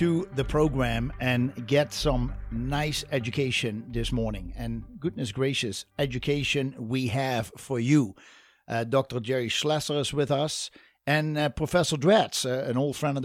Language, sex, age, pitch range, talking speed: English, male, 50-69, 115-145 Hz, 155 wpm